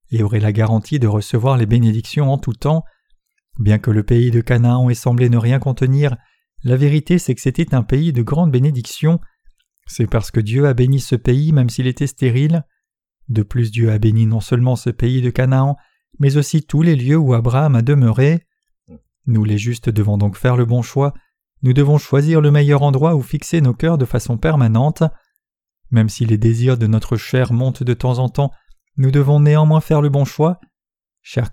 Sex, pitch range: male, 120-150 Hz